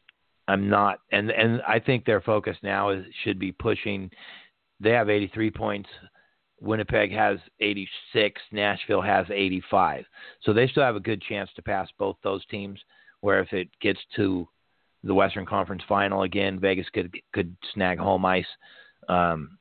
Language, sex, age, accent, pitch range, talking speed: English, male, 40-59, American, 90-100 Hz, 160 wpm